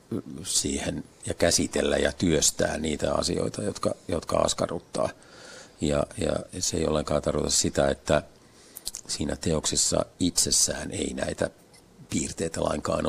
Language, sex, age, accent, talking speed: Finnish, male, 50-69, native, 115 wpm